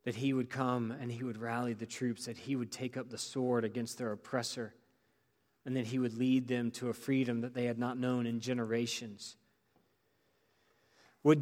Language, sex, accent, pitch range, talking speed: English, male, American, 120-145 Hz, 195 wpm